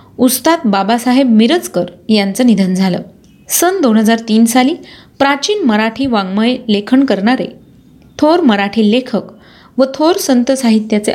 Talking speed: 125 wpm